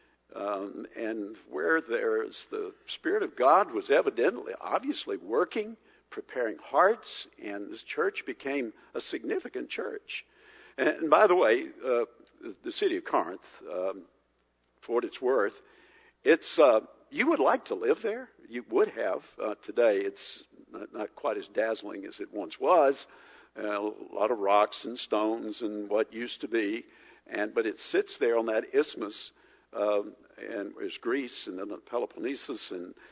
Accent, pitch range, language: American, 320-430 Hz, English